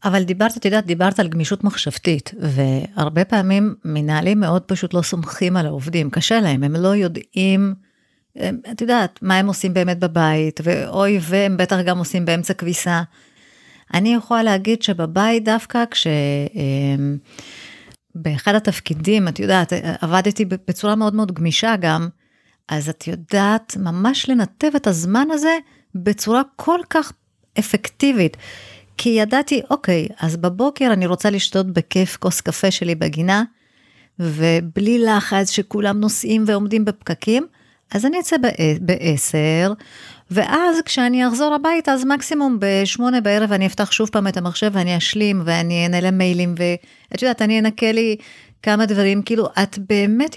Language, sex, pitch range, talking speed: Hebrew, female, 170-220 Hz, 140 wpm